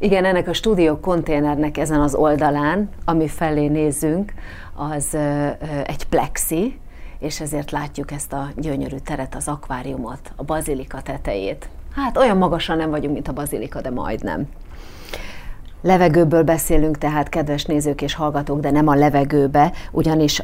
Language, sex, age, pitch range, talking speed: Hungarian, female, 30-49, 145-175 Hz, 140 wpm